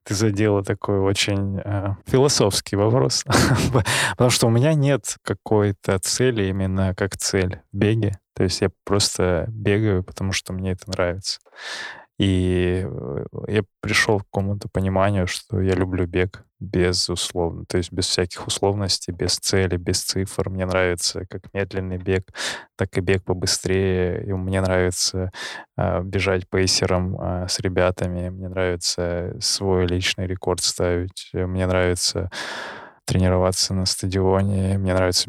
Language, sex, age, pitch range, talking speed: Russian, male, 20-39, 95-105 Hz, 135 wpm